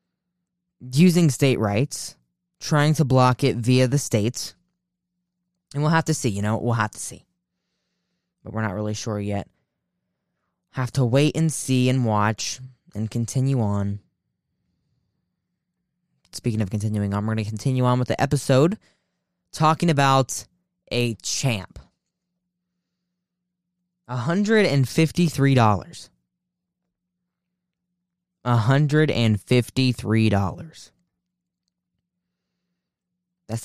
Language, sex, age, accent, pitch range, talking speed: English, male, 10-29, American, 110-175 Hz, 100 wpm